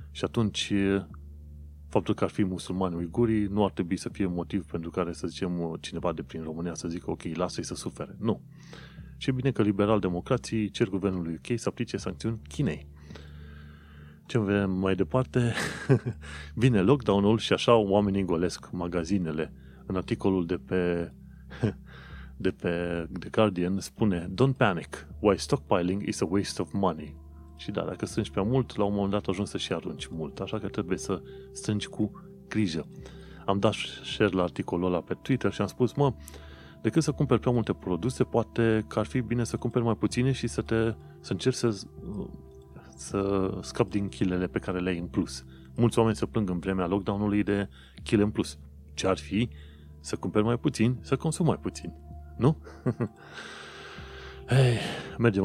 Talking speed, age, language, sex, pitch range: 170 wpm, 30-49, Romanian, male, 80-110 Hz